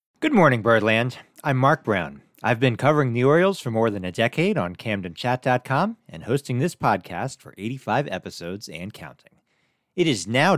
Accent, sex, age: American, male, 40-59